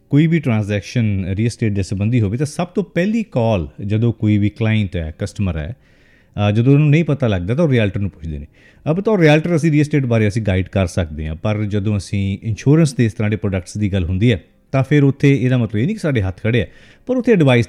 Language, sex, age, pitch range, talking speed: Punjabi, male, 40-59, 95-135 Hz, 235 wpm